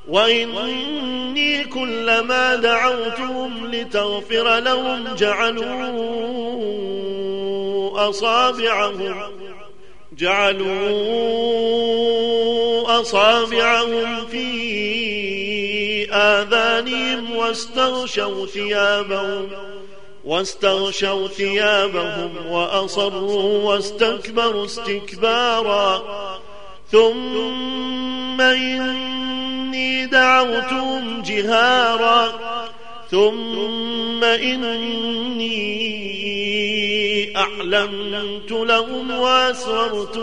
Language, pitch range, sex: Arabic, 205-240 Hz, male